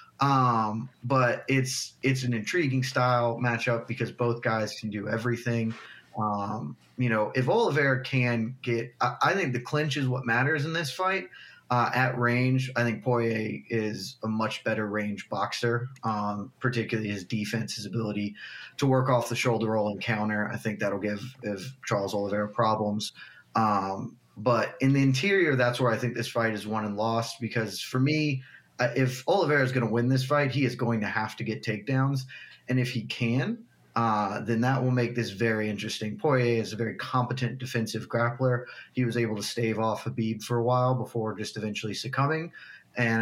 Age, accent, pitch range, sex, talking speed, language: 20-39, American, 110-130 Hz, male, 185 wpm, English